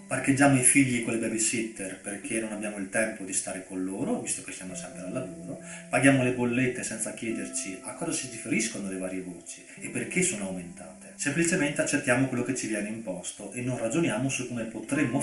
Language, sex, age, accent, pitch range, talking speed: Italian, male, 30-49, native, 115-155 Hz, 195 wpm